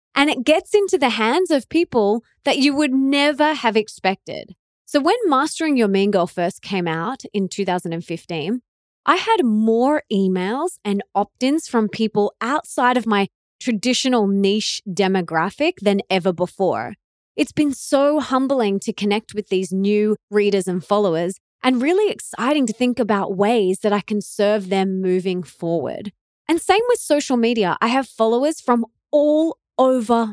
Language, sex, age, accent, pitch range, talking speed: English, female, 20-39, Australian, 190-270 Hz, 155 wpm